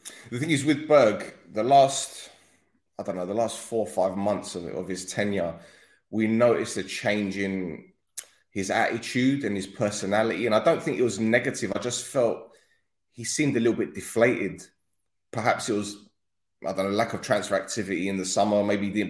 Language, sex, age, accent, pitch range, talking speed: English, male, 20-39, British, 100-125 Hz, 190 wpm